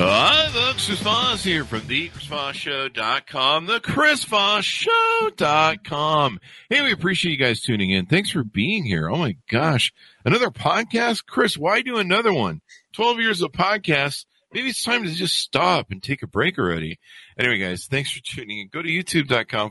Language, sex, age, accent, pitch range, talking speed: English, male, 50-69, American, 95-155 Hz, 165 wpm